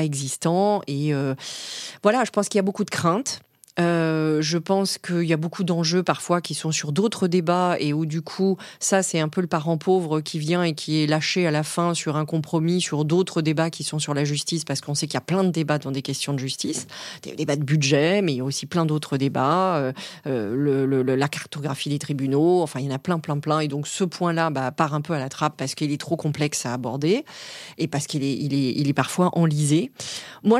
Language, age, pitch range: French, 30-49, 145-175 Hz